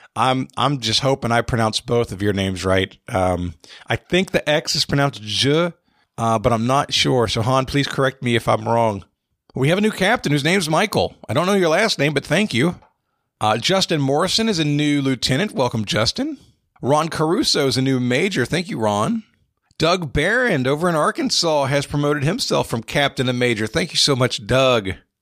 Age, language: 50-69, English